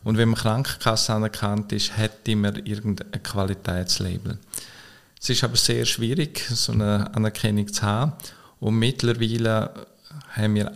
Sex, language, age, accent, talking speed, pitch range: male, German, 50-69, Austrian, 135 wpm, 100-120 Hz